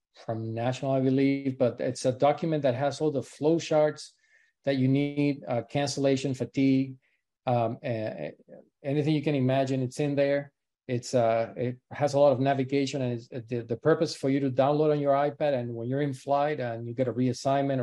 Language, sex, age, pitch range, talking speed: English, male, 40-59, 125-140 Hz, 200 wpm